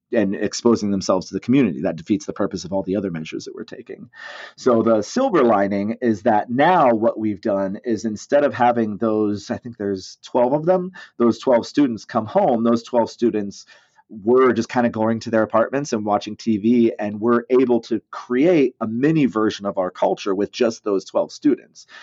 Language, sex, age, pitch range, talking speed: English, male, 30-49, 105-125 Hz, 200 wpm